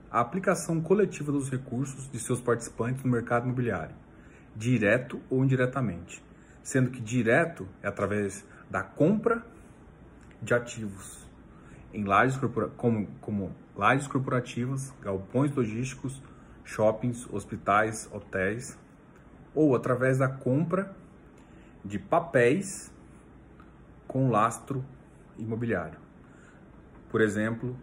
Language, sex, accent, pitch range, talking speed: Portuguese, male, Brazilian, 120-160 Hz, 95 wpm